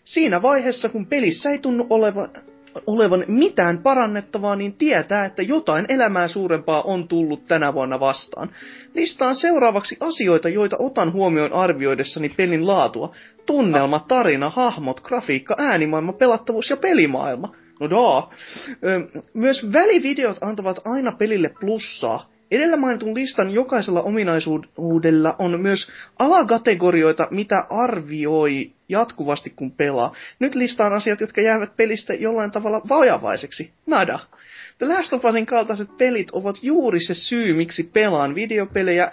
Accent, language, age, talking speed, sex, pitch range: native, Finnish, 30-49, 120 wpm, male, 170-245 Hz